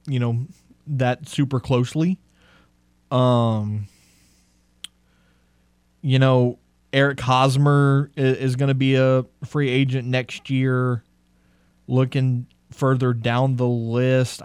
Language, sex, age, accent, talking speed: English, male, 20-39, American, 105 wpm